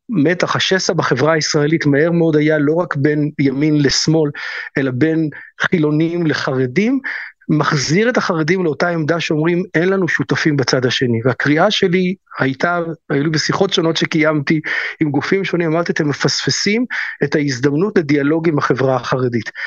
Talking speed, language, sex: 145 wpm, Hebrew, male